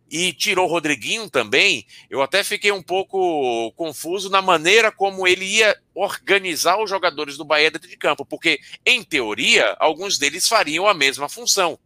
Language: Portuguese